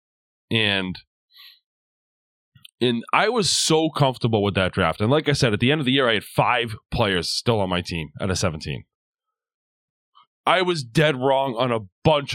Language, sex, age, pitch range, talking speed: English, male, 20-39, 110-155 Hz, 180 wpm